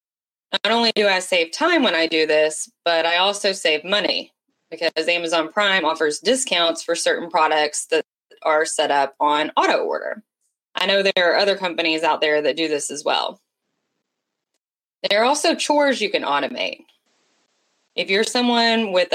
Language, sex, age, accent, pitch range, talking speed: English, female, 20-39, American, 160-225 Hz, 170 wpm